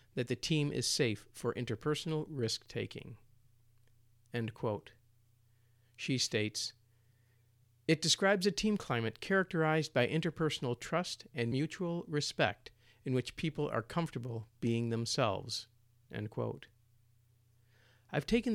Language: English